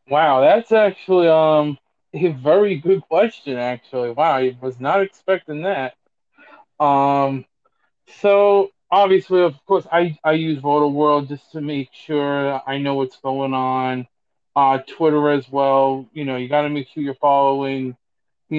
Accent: American